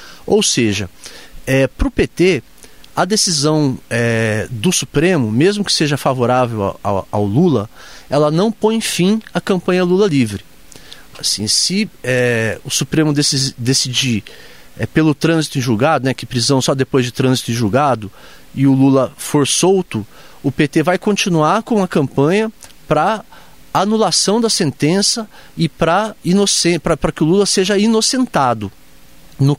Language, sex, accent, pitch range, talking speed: Portuguese, male, Brazilian, 130-200 Hz, 130 wpm